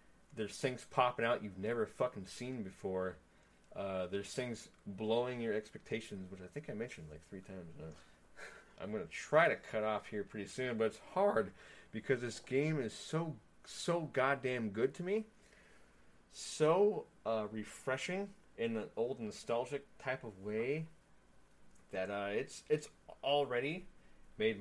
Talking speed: 155 wpm